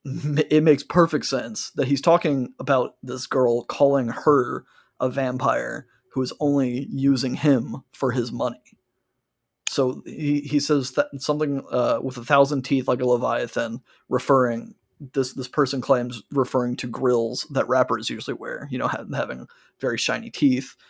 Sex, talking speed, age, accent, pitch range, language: male, 155 wpm, 30-49, American, 125-145 Hz, English